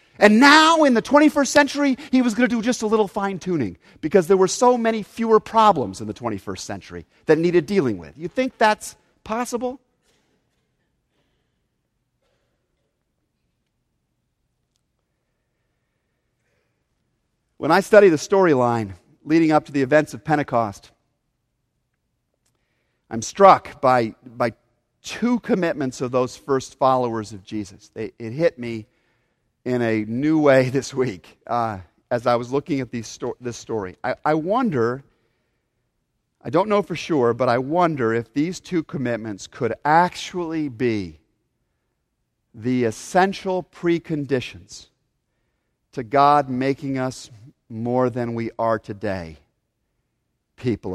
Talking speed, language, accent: 125 wpm, English, American